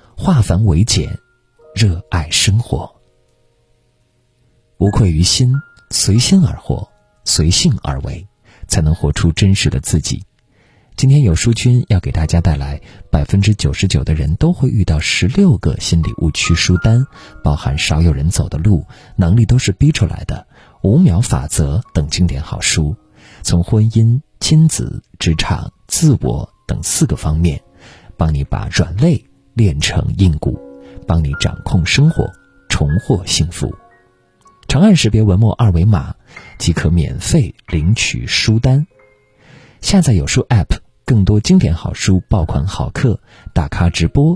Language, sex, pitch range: Chinese, male, 85-120 Hz